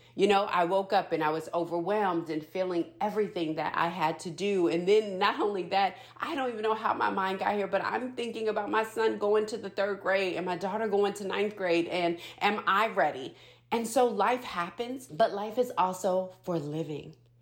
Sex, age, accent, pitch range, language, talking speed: female, 40-59, American, 160-205 Hz, English, 215 wpm